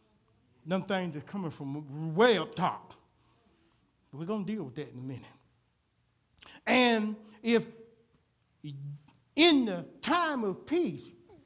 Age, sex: 60-79, male